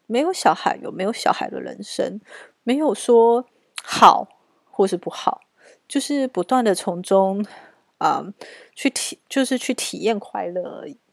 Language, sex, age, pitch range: Chinese, female, 30-49, 190-260 Hz